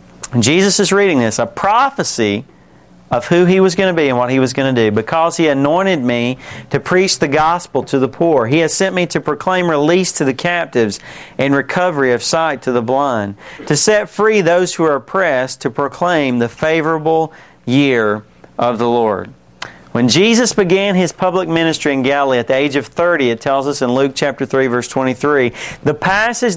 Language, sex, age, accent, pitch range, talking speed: English, male, 40-59, American, 135-195 Hz, 195 wpm